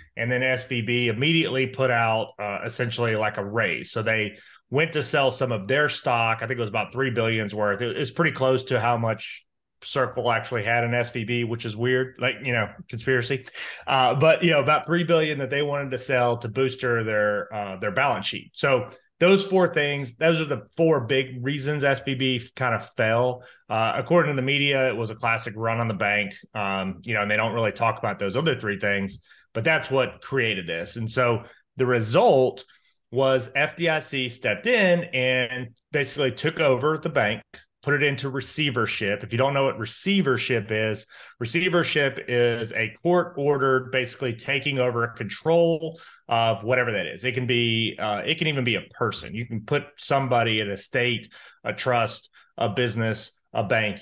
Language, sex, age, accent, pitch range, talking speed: English, male, 30-49, American, 115-140 Hz, 190 wpm